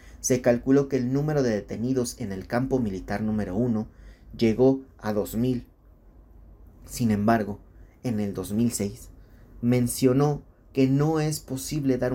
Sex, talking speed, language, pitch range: male, 135 wpm, Spanish, 95-125 Hz